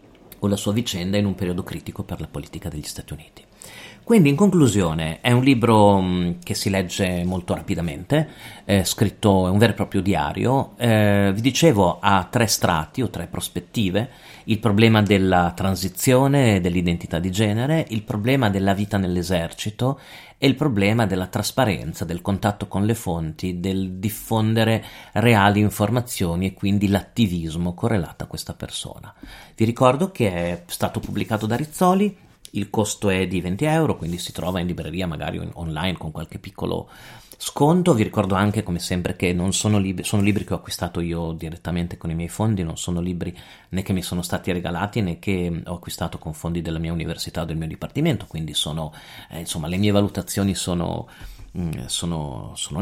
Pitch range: 90-110 Hz